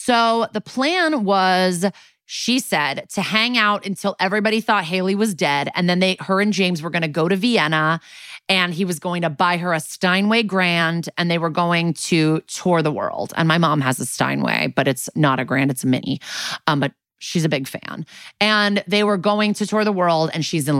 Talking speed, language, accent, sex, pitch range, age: 215 wpm, English, American, female, 165-210 Hz, 30-49